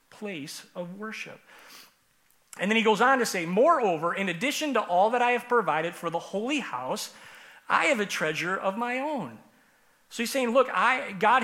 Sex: male